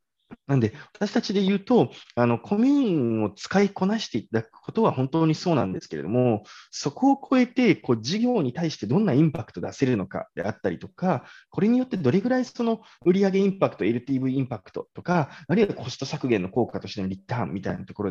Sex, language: male, Japanese